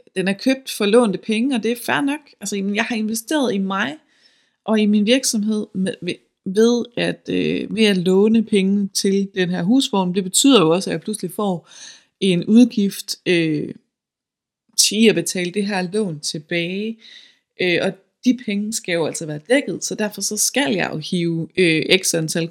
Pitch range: 160-210 Hz